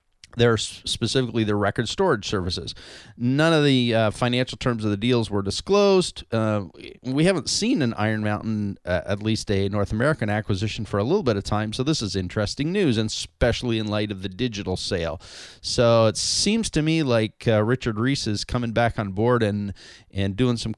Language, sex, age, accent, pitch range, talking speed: English, male, 30-49, American, 105-130 Hz, 195 wpm